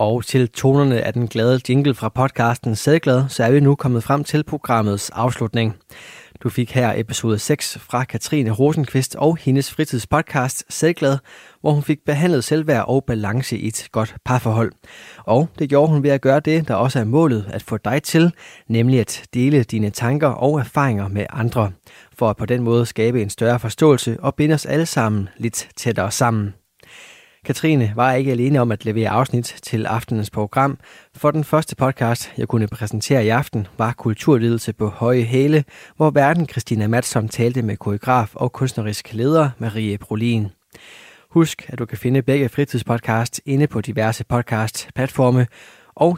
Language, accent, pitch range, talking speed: Danish, native, 110-140 Hz, 175 wpm